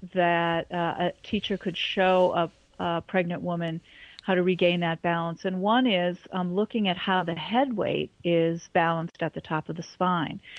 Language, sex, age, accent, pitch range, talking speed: English, female, 40-59, American, 165-185 Hz, 195 wpm